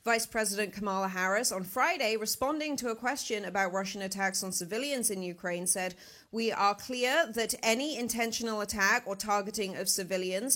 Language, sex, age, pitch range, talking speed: English, female, 30-49, 190-230 Hz, 165 wpm